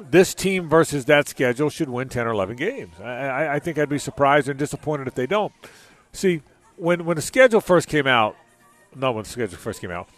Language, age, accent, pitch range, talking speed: English, 40-59, American, 130-175 Hz, 225 wpm